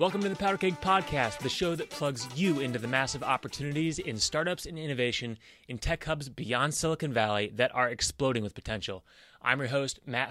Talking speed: 200 wpm